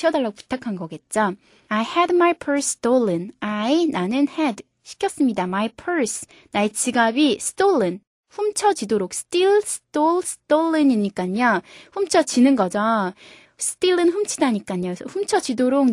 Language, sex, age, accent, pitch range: Korean, female, 20-39, native, 210-310 Hz